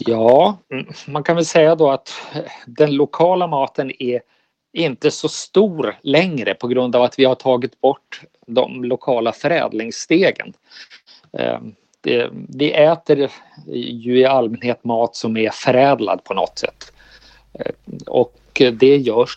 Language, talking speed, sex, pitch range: Swedish, 125 wpm, male, 115-145 Hz